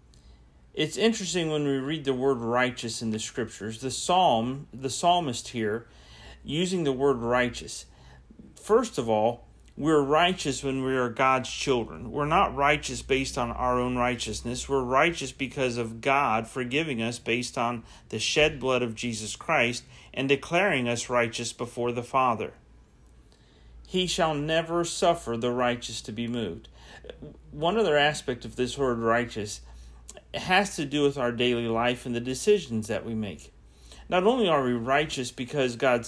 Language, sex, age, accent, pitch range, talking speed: English, male, 40-59, American, 115-145 Hz, 160 wpm